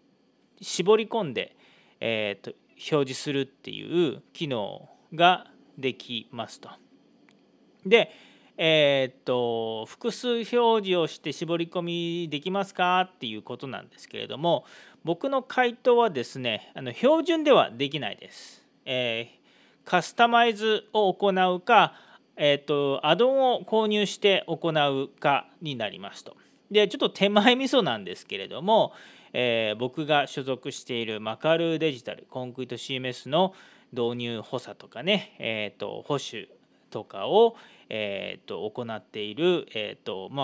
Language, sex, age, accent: Japanese, male, 40-59, native